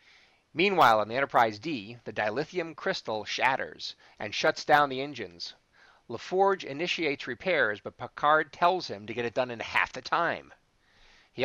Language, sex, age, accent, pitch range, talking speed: English, male, 40-59, American, 125-180 Hz, 150 wpm